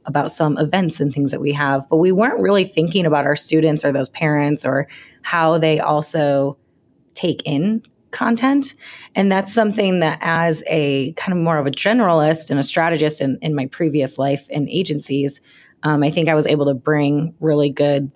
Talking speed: 190 wpm